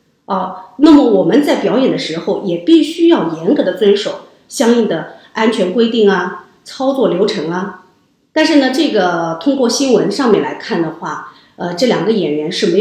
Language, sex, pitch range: Chinese, female, 195-275 Hz